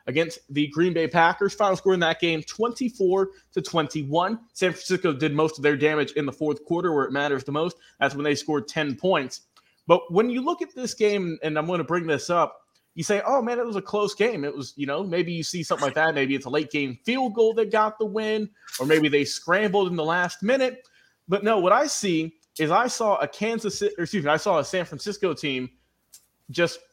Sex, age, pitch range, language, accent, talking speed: male, 20-39, 155-200 Hz, English, American, 235 wpm